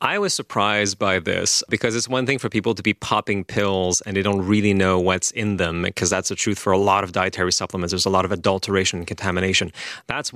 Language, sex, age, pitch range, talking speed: English, male, 30-49, 95-110 Hz, 240 wpm